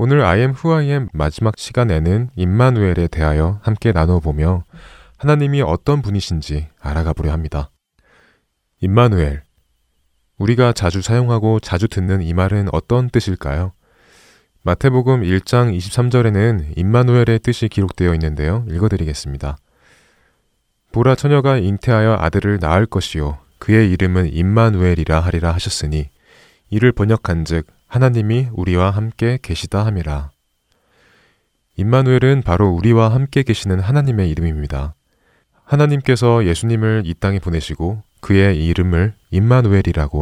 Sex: male